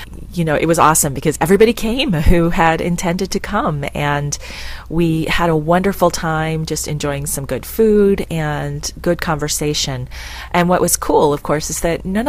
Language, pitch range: English, 145-175 Hz